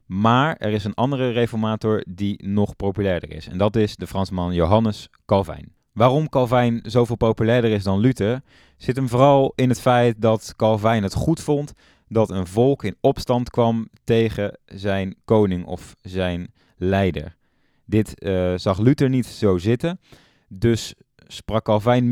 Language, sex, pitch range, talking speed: Dutch, male, 95-120 Hz, 155 wpm